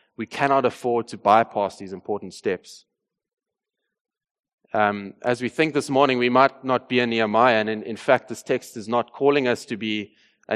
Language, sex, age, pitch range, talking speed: English, male, 20-39, 105-125 Hz, 190 wpm